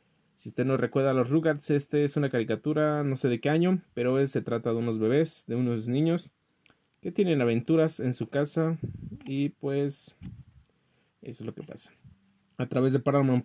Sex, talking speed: male, 190 wpm